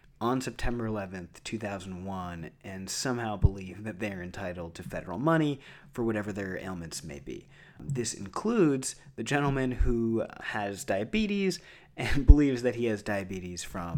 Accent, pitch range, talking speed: American, 95-140 Hz, 140 wpm